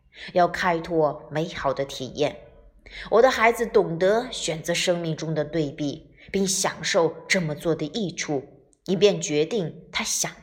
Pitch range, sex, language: 145-195 Hz, female, Chinese